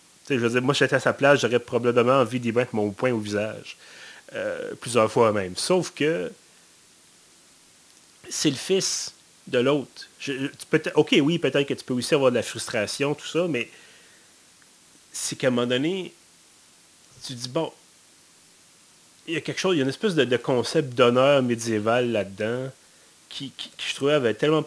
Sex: male